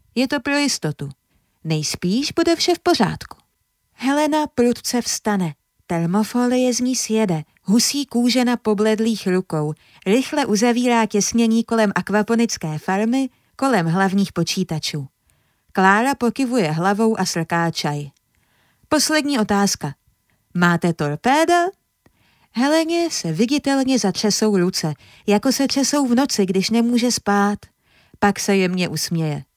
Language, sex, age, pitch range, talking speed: Czech, female, 30-49, 165-255 Hz, 115 wpm